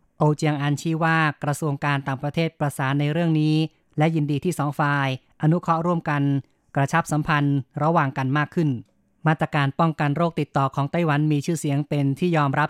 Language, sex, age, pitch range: Thai, female, 20-39, 145-165 Hz